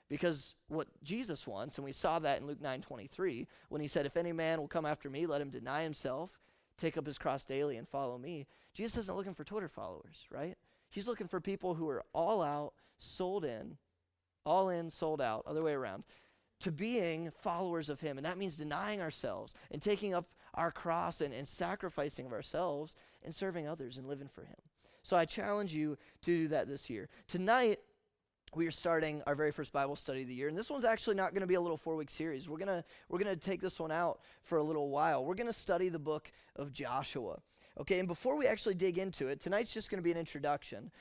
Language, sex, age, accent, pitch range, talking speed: English, male, 30-49, American, 145-185 Hz, 220 wpm